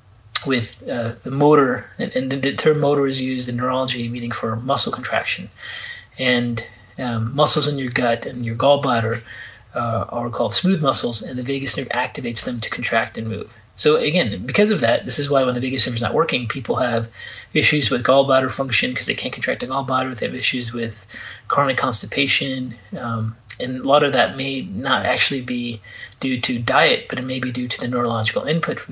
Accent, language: American, English